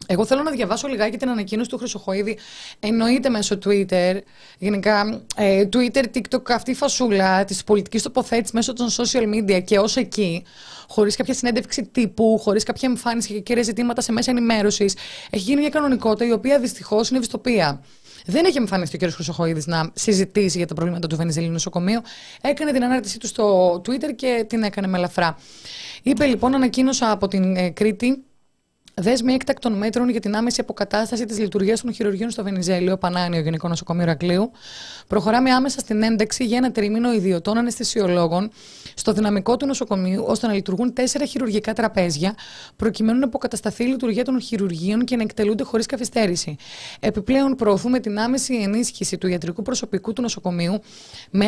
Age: 20-39